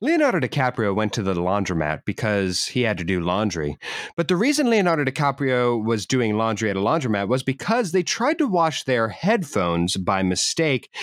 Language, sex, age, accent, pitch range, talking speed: English, male, 30-49, American, 105-140 Hz, 180 wpm